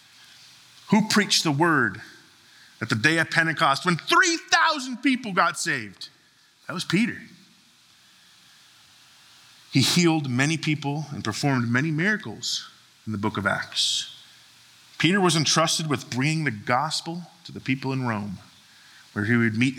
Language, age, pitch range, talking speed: English, 30-49, 115-160 Hz, 140 wpm